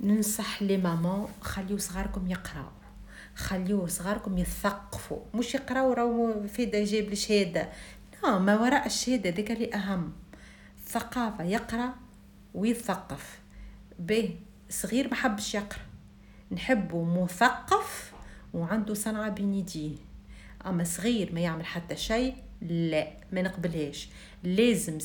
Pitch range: 175-220 Hz